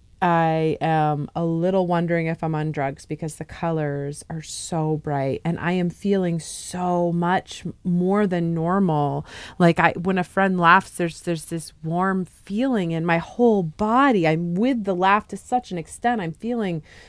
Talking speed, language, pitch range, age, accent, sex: 170 wpm, English, 175-215 Hz, 30-49, American, female